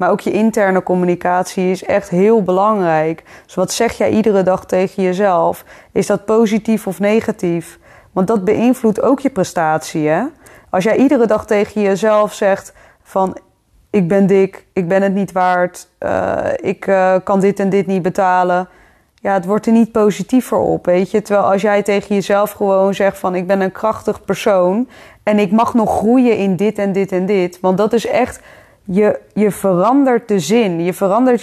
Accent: Dutch